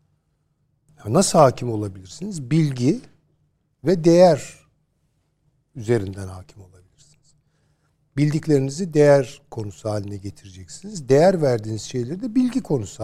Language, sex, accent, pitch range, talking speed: Turkish, male, native, 120-160 Hz, 90 wpm